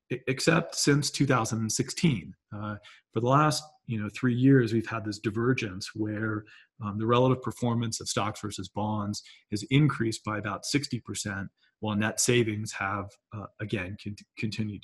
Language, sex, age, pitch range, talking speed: English, male, 40-59, 105-125 Hz, 150 wpm